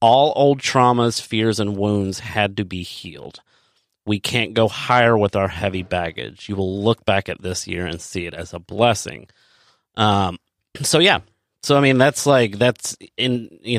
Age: 30-49